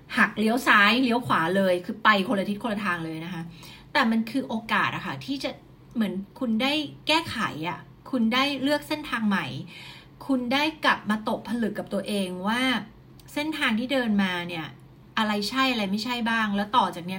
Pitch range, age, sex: 180-230 Hz, 30-49, female